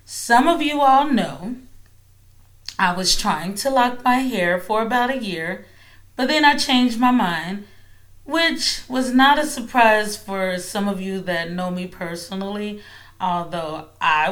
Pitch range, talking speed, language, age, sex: 175-235 Hz, 155 wpm, English, 30-49, female